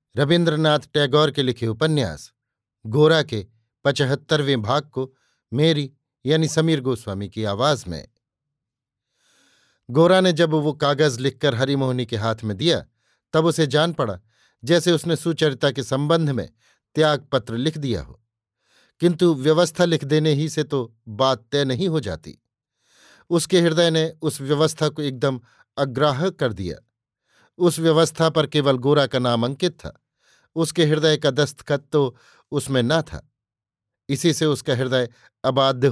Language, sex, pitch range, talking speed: Hindi, male, 130-160 Hz, 145 wpm